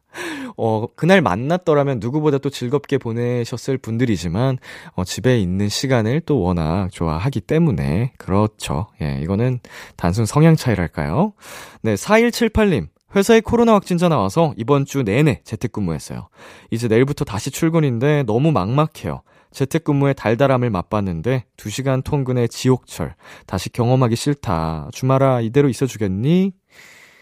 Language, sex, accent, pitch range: Korean, male, native, 100-145 Hz